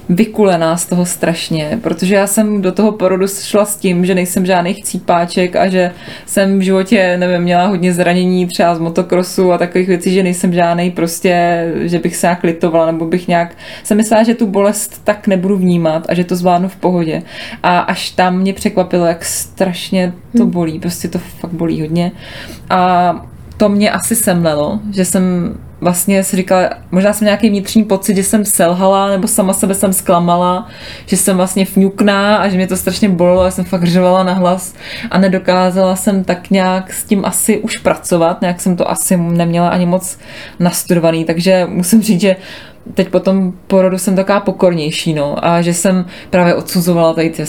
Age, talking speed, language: 20-39, 185 wpm, Czech